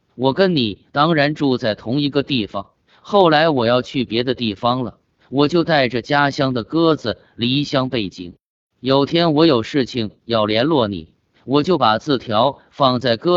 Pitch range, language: 115-145 Hz, Chinese